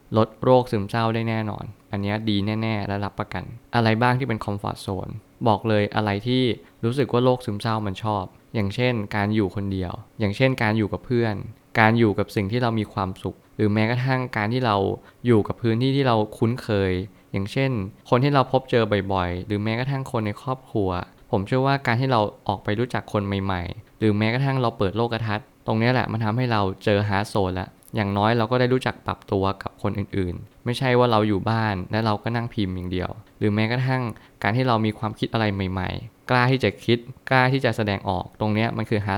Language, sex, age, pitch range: Thai, male, 20-39, 100-120 Hz